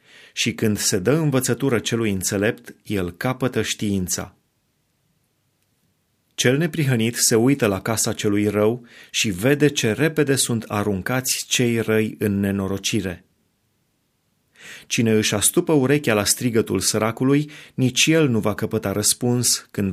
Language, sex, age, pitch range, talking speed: Romanian, male, 30-49, 105-125 Hz, 125 wpm